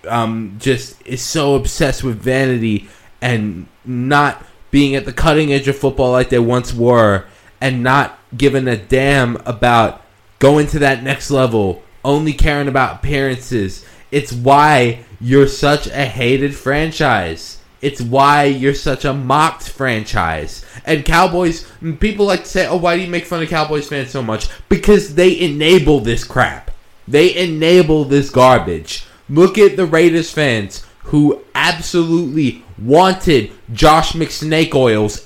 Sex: male